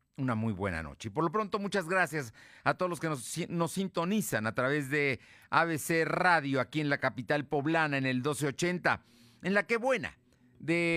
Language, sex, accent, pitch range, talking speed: Spanish, male, Mexican, 115-160 Hz, 190 wpm